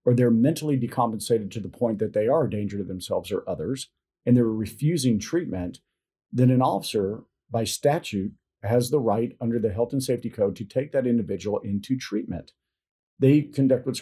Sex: male